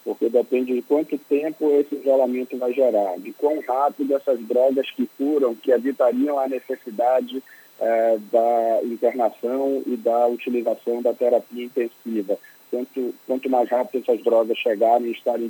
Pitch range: 115-130 Hz